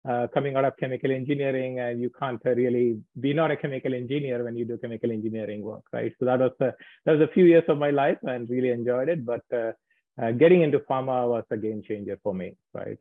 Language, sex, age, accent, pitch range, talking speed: English, male, 30-49, Indian, 110-130 Hz, 250 wpm